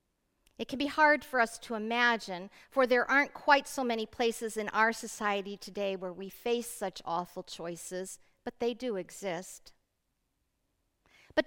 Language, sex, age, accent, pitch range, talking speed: English, female, 50-69, American, 185-235 Hz, 155 wpm